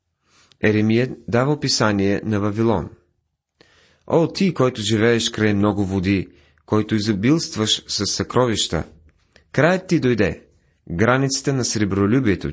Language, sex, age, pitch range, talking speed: Bulgarian, male, 40-59, 95-120 Hz, 105 wpm